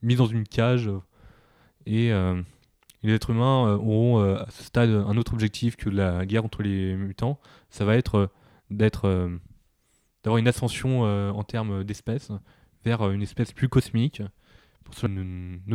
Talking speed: 170 wpm